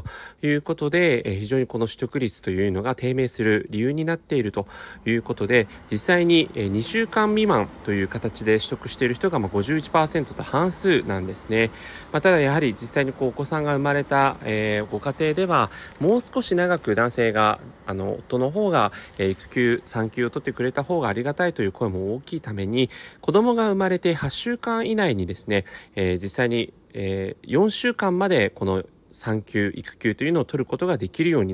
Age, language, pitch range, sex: 30-49, Japanese, 105-160 Hz, male